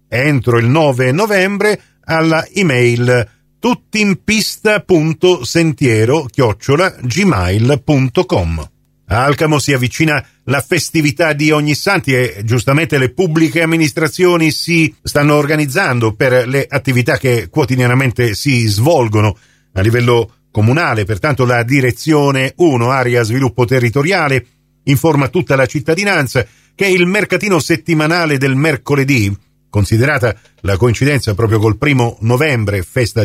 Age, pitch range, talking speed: 40-59, 130-180 Hz, 110 wpm